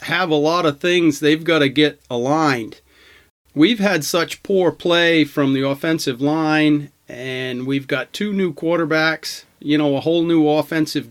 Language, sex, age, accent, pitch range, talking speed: English, male, 40-59, American, 145-170 Hz, 165 wpm